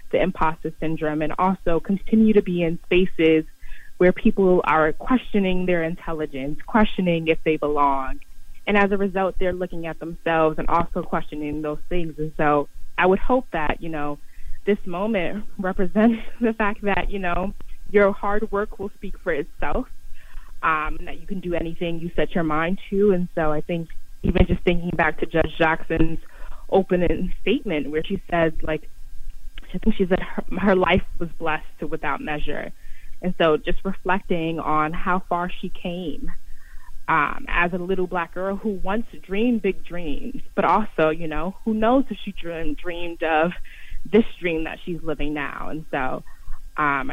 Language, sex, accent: English, female, American